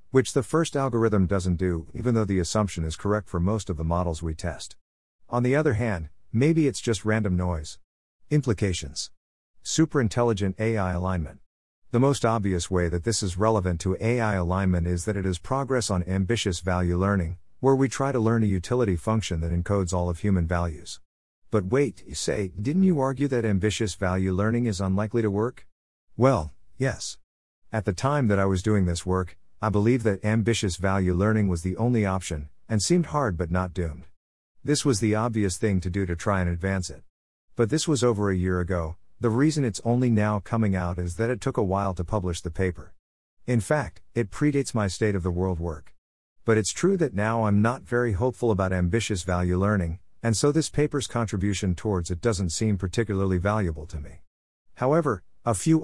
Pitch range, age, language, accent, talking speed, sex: 90-115 Hz, 50-69, English, American, 195 wpm, male